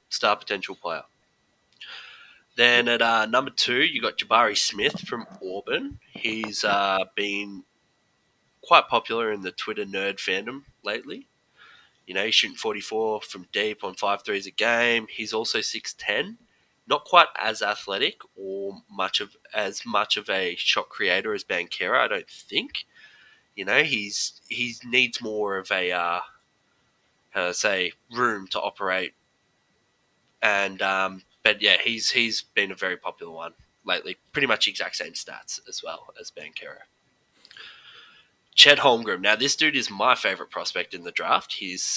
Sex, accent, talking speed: male, Australian, 155 wpm